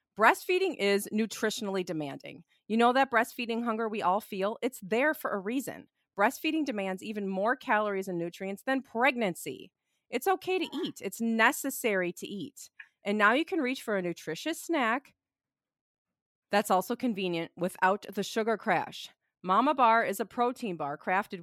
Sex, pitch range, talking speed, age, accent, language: female, 185-255 Hz, 160 wpm, 40-59, American, English